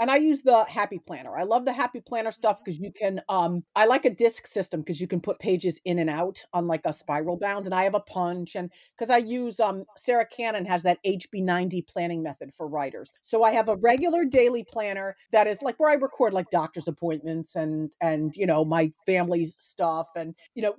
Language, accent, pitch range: English, American, 170-230 Hz